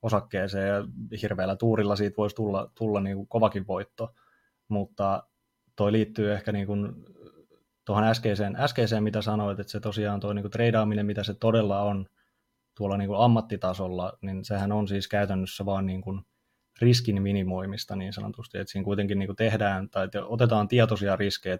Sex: male